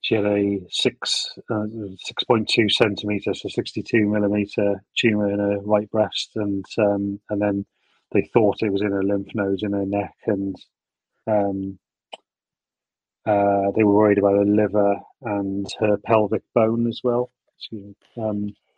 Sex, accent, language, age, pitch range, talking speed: male, British, English, 30-49, 100-115 Hz, 160 wpm